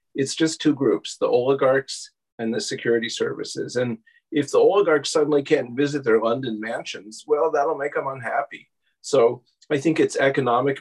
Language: English